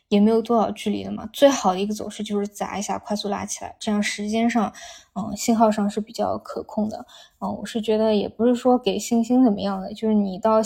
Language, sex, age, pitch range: Chinese, female, 10-29, 200-230 Hz